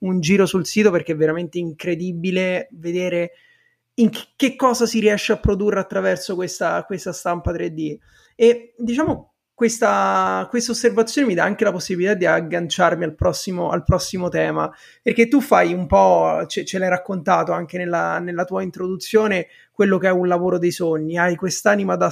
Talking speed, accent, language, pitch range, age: 160 wpm, native, Italian, 175-205 Hz, 30-49